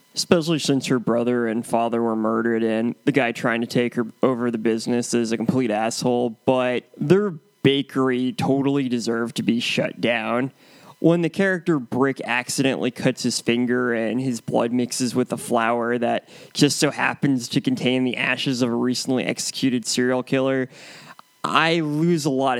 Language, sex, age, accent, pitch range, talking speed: English, male, 20-39, American, 125-150 Hz, 170 wpm